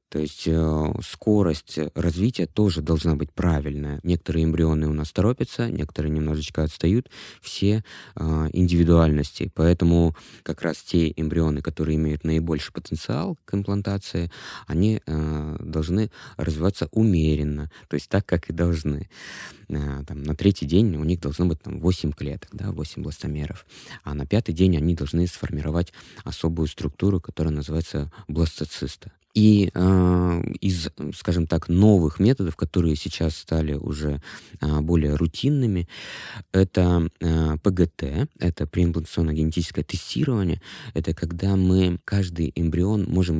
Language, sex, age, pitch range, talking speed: Russian, male, 20-39, 75-95 Hz, 125 wpm